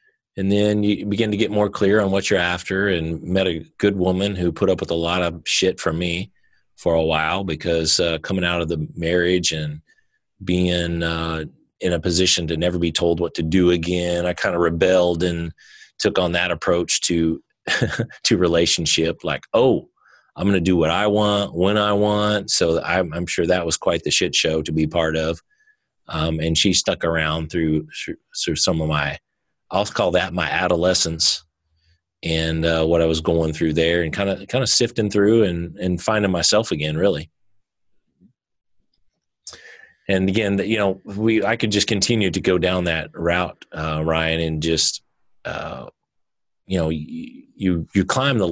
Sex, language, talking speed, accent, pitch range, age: male, English, 185 wpm, American, 80-95 Hz, 30-49